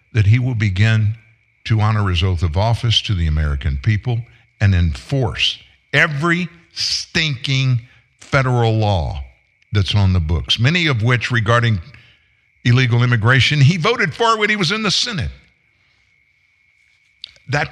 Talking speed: 135 wpm